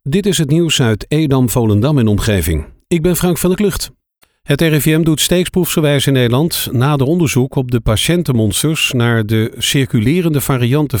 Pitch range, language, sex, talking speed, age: 110-140 Hz, Dutch, male, 165 wpm, 50-69